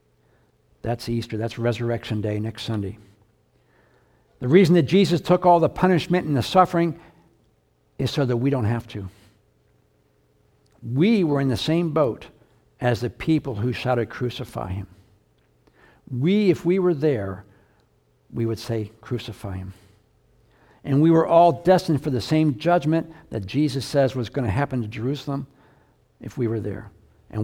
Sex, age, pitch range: male, 60-79, 115-150 Hz